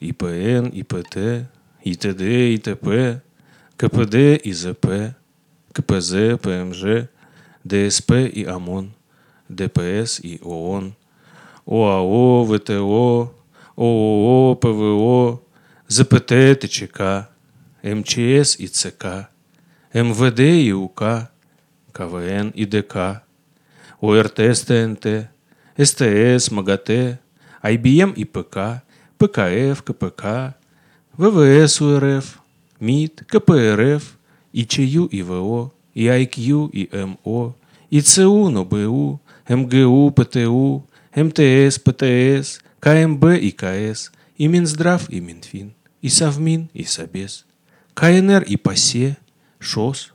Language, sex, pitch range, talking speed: Russian, male, 105-150 Hz, 75 wpm